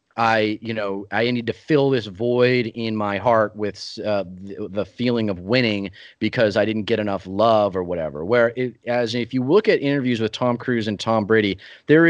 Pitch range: 105-130 Hz